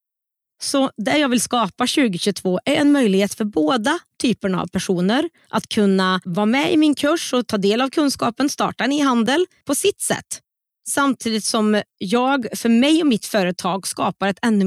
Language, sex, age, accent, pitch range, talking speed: Swedish, female, 30-49, native, 195-275 Hz, 180 wpm